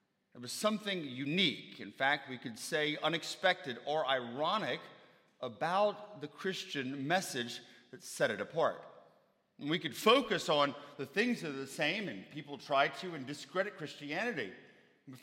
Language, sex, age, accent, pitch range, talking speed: English, male, 40-59, American, 150-210 Hz, 150 wpm